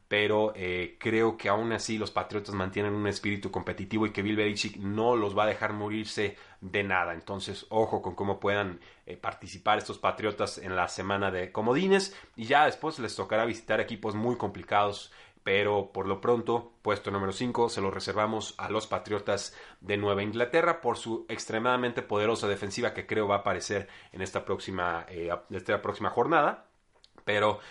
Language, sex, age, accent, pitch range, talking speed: Spanish, male, 30-49, Mexican, 95-110 Hz, 175 wpm